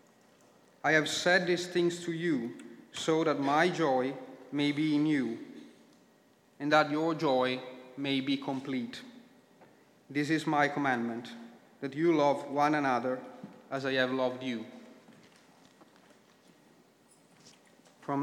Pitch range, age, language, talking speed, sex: 135-160 Hz, 40-59, English, 120 wpm, male